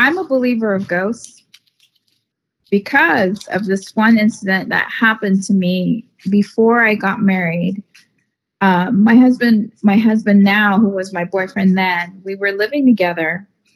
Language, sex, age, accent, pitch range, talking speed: English, female, 20-39, American, 180-220 Hz, 145 wpm